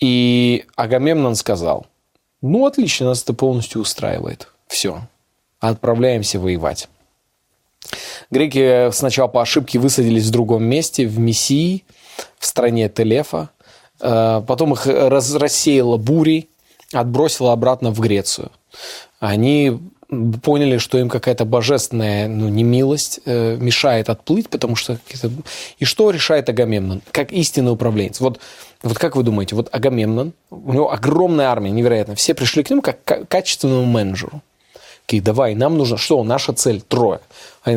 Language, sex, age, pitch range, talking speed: Russian, male, 20-39, 110-140 Hz, 135 wpm